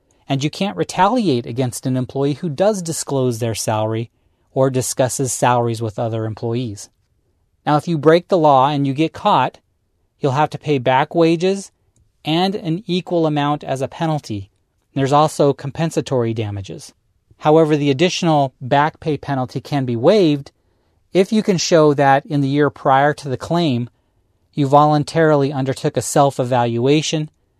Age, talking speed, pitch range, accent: 30-49, 155 wpm, 115-160 Hz, American